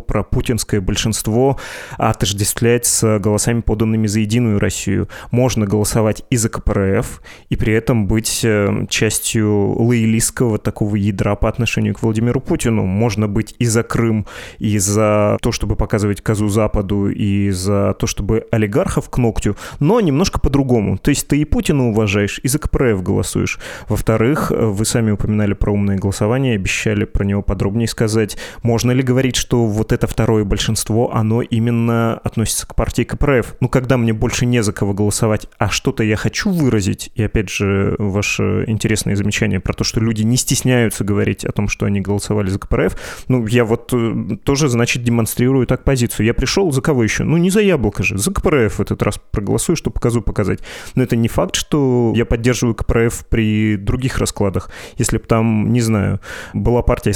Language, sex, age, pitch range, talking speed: Russian, male, 20-39, 105-120 Hz, 170 wpm